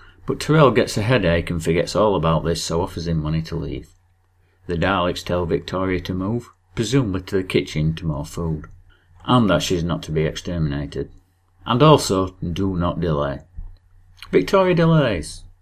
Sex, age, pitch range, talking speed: male, 40-59, 85-95 Hz, 165 wpm